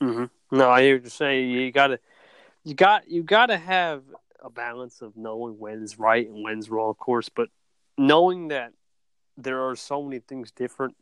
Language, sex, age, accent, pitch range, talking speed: English, male, 20-39, American, 115-140 Hz, 195 wpm